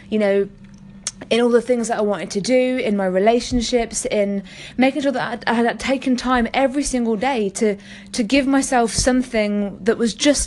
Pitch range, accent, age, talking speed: 200-245 Hz, British, 20-39, 190 wpm